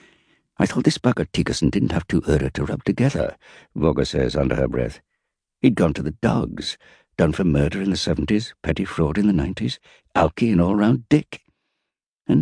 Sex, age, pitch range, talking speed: male, 60-79, 70-90 Hz, 190 wpm